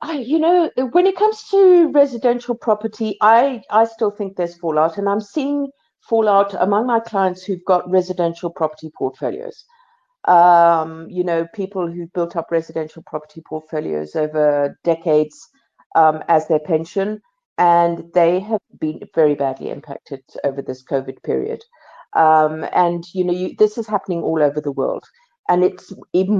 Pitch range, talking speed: 160-235 Hz, 150 wpm